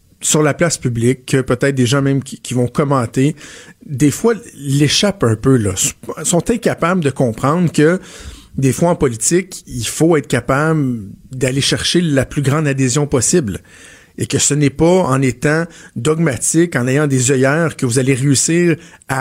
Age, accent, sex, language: 50-69, Canadian, male, French